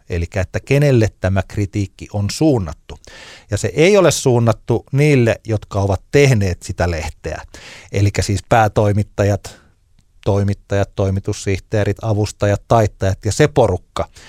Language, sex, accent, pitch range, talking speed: Finnish, male, native, 95-115 Hz, 120 wpm